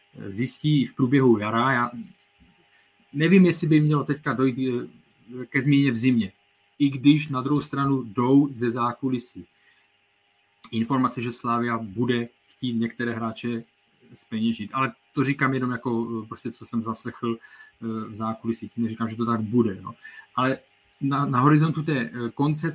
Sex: male